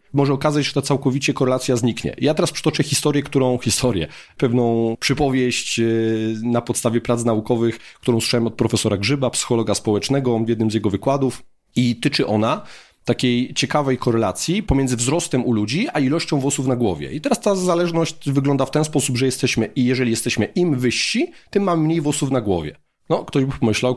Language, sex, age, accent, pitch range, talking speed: Polish, male, 30-49, native, 115-145 Hz, 180 wpm